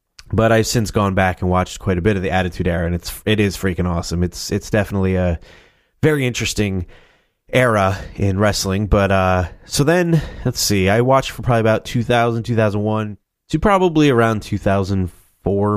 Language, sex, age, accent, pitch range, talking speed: English, male, 20-39, American, 95-125 Hz, 175 wpm